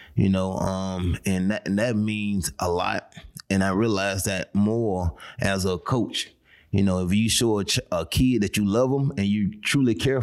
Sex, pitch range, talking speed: male, 95-110 Hz, 205 wpm